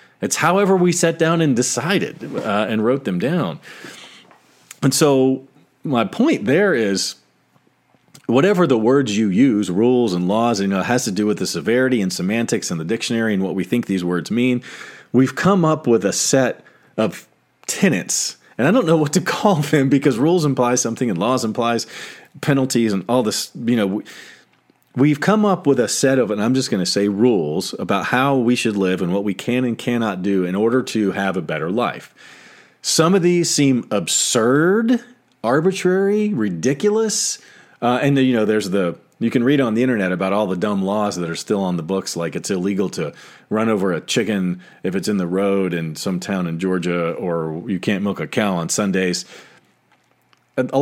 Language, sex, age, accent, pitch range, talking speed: English, male, 40-59, American, 100-145 Hz, 195 wpm